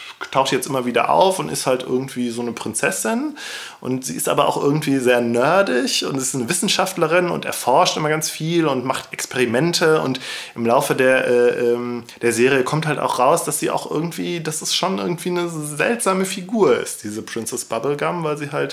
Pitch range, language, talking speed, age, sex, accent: 120-150 Hz, German, 190 wpm, 20-39, male, German